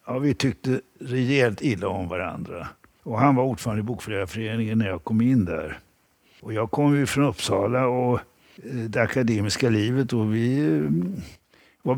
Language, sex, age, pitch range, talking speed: Swedish, male, 60-79, 105-135 Hz, 155 wpm